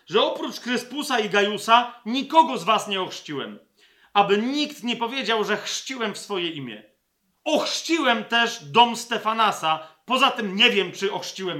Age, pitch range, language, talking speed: 40-59, 190-235 Hz, Polish, 150 wpm